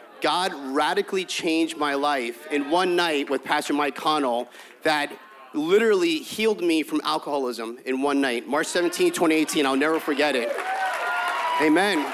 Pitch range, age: 145-185 Hz, 30-49